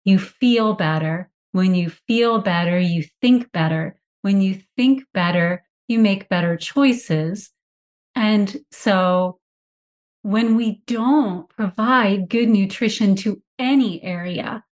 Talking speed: 120 wpm